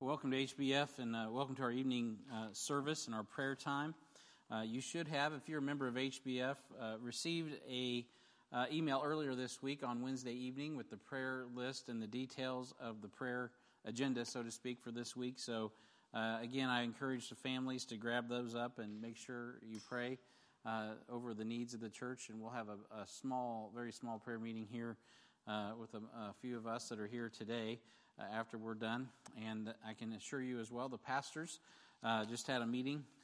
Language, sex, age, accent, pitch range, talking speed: English, male, 50-69, American, 115-130 Hz, 205 wpm